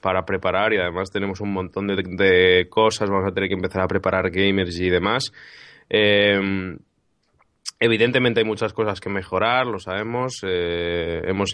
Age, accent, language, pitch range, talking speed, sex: 20-39, Spanish, Spanish, 95-105 Hz, 160 wpm, male